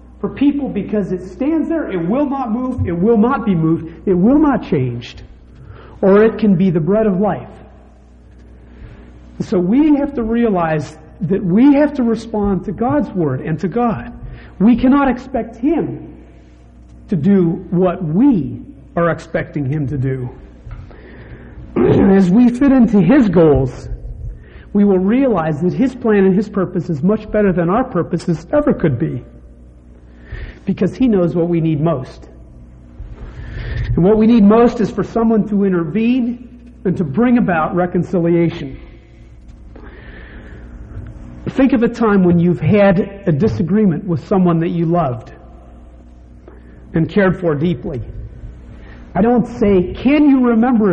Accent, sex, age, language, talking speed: American, male, 50-69, English, 145 wpm